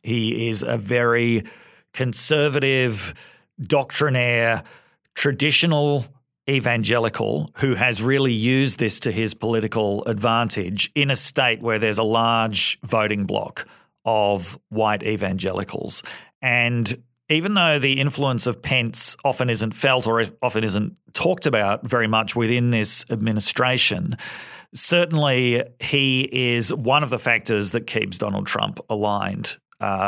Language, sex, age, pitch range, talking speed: English, male, 40-59, 105-125 Hz, 125 wpm